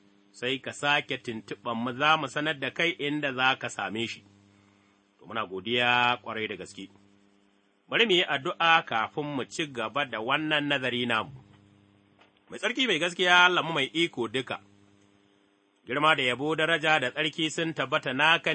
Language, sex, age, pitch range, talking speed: English, male, 30-49, 100-150 Hz, 125 wpm